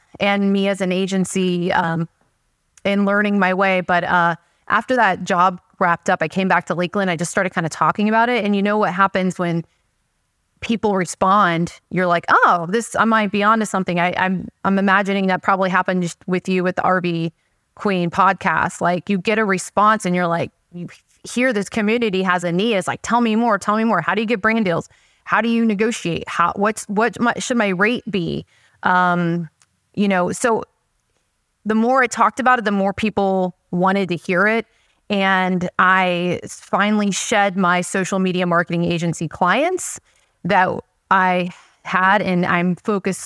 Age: 20-39